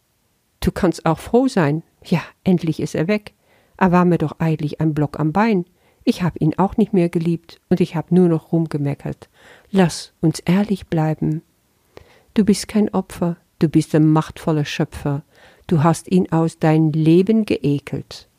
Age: 50-69